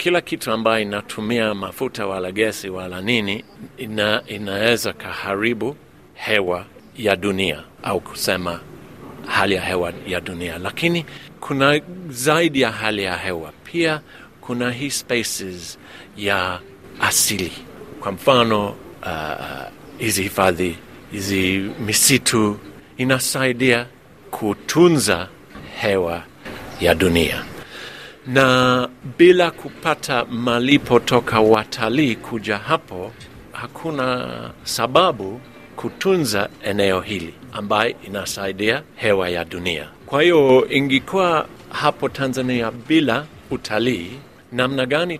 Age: 50-69